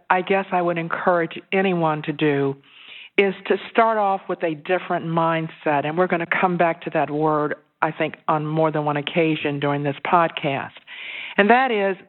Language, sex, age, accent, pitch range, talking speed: English, female, 50-69, American, 165-195 Hz, 190 wpm